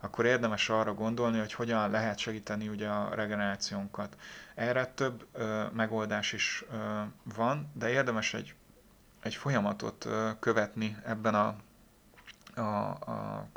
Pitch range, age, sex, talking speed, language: 105-120 Hz, 30-49, male, 135 wpm, Hungarian